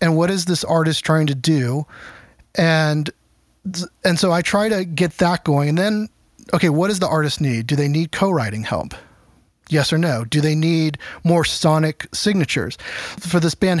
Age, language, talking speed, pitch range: 30-49, English, 185 wpm, 150-175 Hz